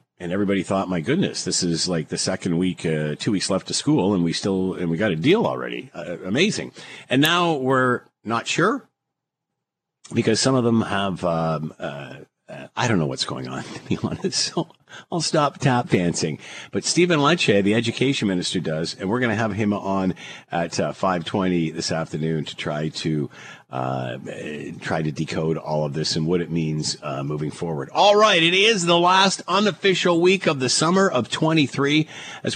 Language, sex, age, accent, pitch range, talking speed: English, male, 50-69, American, 85-125 Hz, 195 wpm